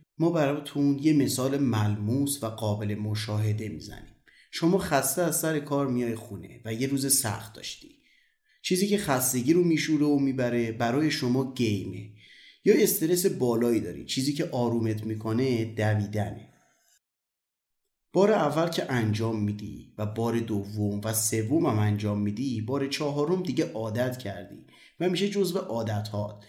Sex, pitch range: male, 110-150 Hz